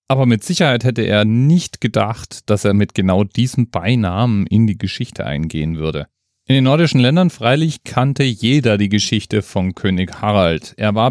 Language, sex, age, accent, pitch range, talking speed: German, male, 40-59, German, 100-135 Hz, 175 wpm